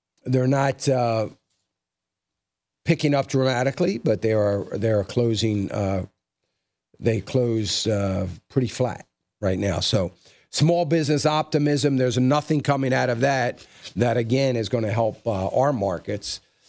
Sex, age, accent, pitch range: male, 50-69, American, 115-150 Hz